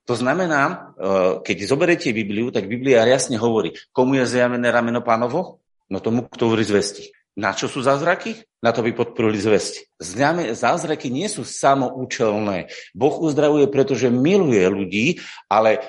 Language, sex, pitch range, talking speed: Slovak, male, 110-140 Hz, 145 wpm